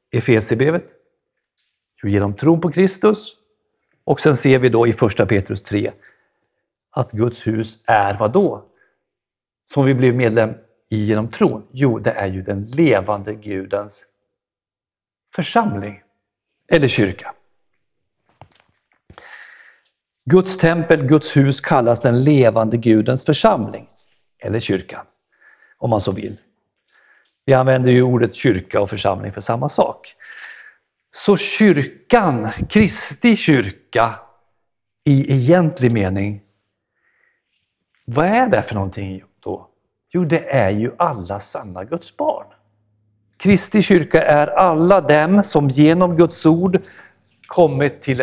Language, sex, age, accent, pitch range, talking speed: Swedish, male, 50-69, native, 105-170 Hz, 115 wpm